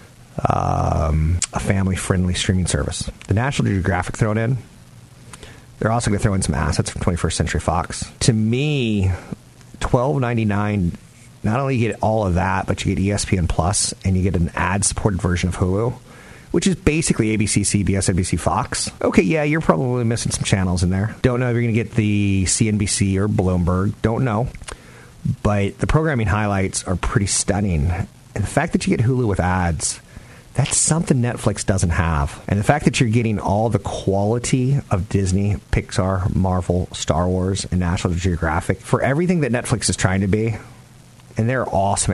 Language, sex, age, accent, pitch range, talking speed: English, male, 40-59, American, 90-120 Hz, 175 wpm